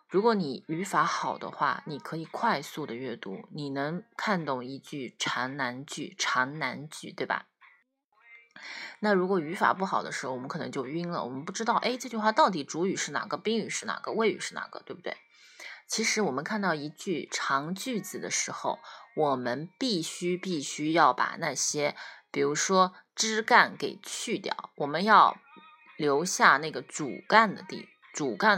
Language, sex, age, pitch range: Chinese, female, 20-39, 155-235 Hz